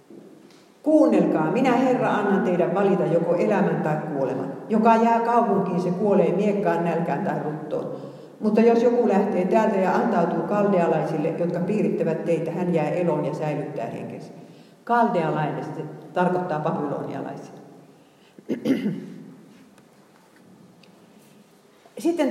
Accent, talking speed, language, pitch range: native, 110 wpm, Finnish, 170-205 Hz